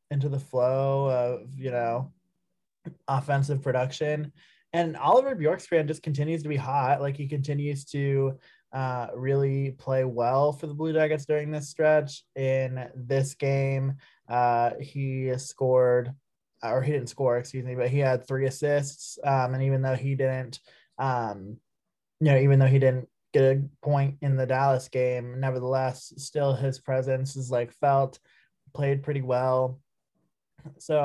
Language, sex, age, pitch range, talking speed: English, male, 20-39, 130-140 Hz, 155 wpm